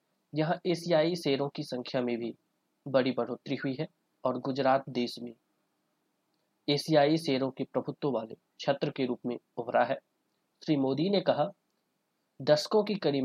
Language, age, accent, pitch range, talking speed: Hindi, 30-49, native, 125-160 Hz, 150 wpm